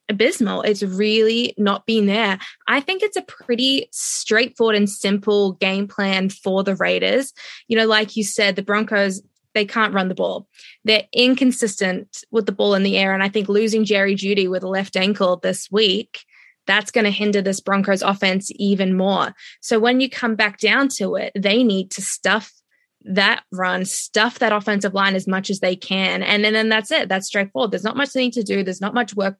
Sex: female